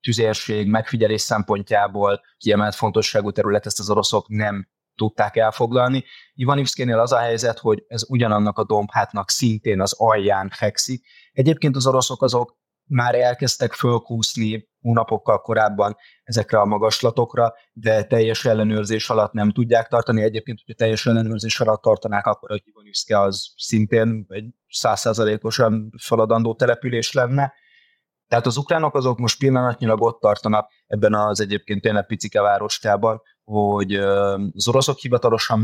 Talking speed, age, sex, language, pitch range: 130 wpm, 20-39, male, Hungarian, 105-120 Hz